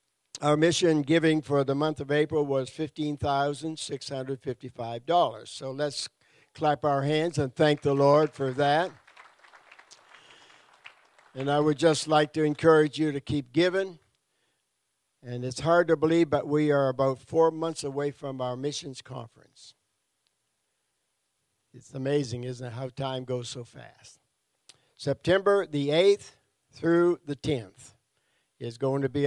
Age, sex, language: 60-79, male, English